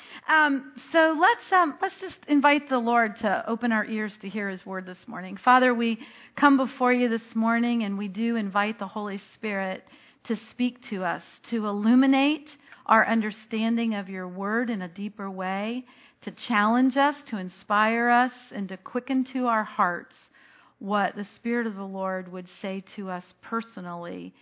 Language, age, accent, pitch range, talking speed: English, 40-59, American, 215-270 Hz, 175 wpm